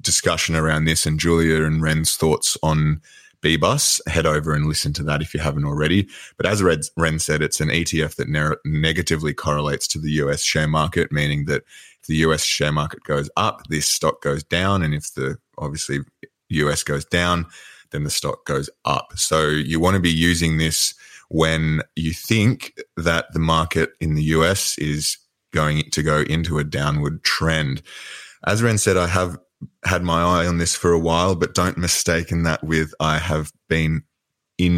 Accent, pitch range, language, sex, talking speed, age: Australian, 75-85 Hz, English, male, 185 wpm, 20-39